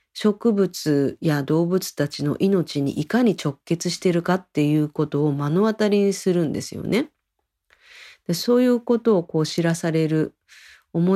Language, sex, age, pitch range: Japanese, female, 40-59, 150-190 Hz